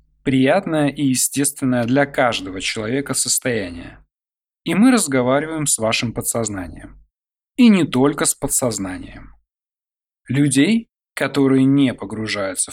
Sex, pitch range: male, 120-155 Hz